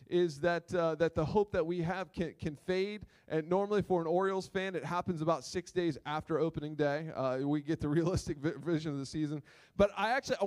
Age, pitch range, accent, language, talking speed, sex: 20-39, 155-200 Hz, American, English, 230 wpm, male